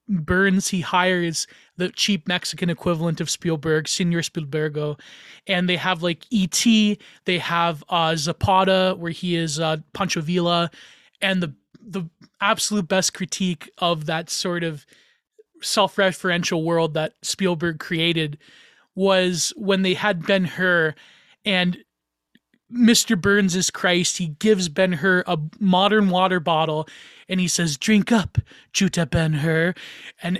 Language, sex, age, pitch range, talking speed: English, male, 20-39, 170-210 Hz, 130 wpm